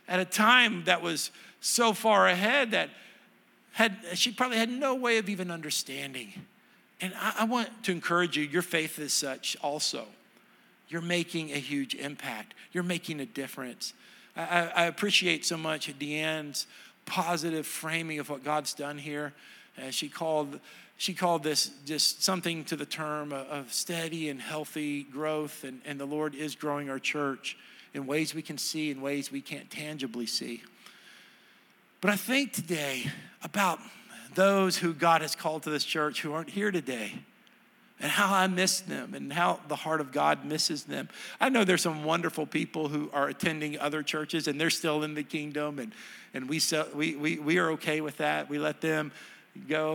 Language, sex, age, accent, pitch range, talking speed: English, male, 50-69, American, 150-180 Hz, 180 wpm